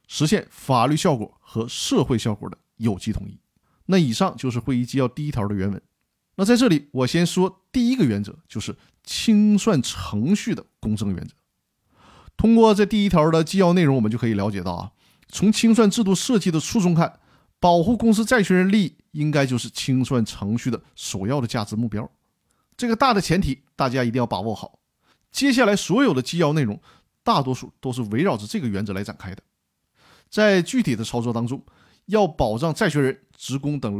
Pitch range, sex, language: 115-170 Hz, male, Chinese